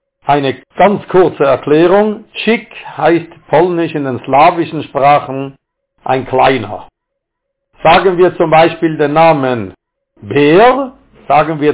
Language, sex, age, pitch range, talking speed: German, male, 60-79, 140-185 Hz, 110 wpm